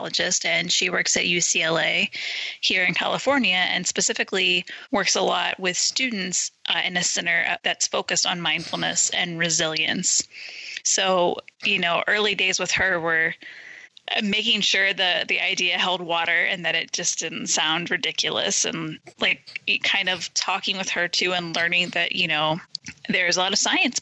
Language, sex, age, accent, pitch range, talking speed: English, female, 20-39, American, 170-210 Hz, 165 wpm